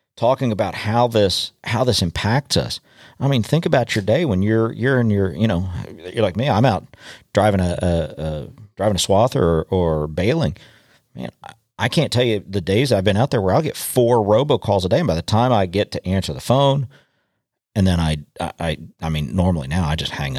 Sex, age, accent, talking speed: male, 40-59, American, 230 wpm